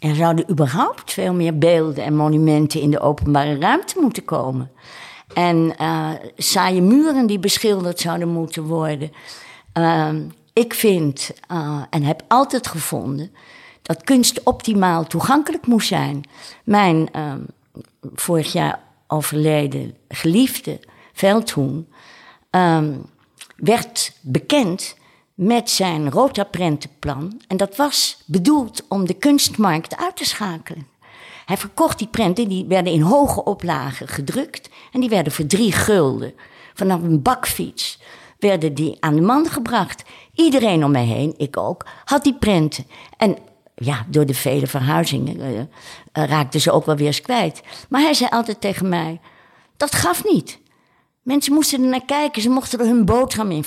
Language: Dutch